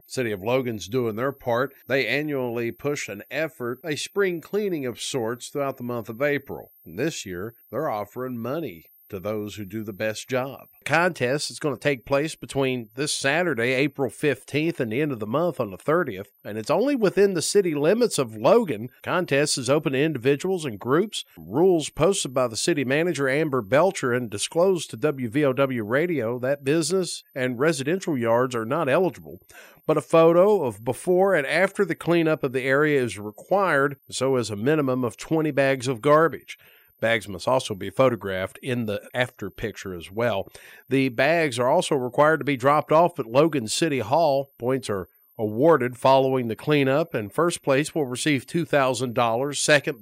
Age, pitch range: 50-69, 120-155 Hz